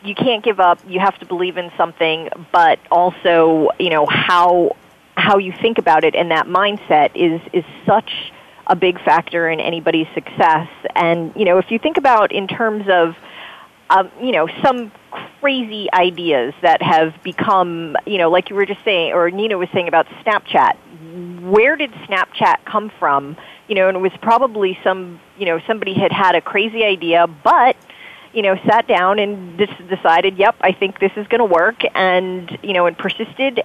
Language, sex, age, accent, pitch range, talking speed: English, female, 30-49, American, 165-195 Hz, 185 wpm